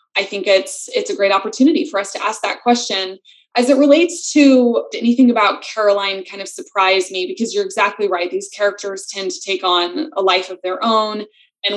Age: 20-39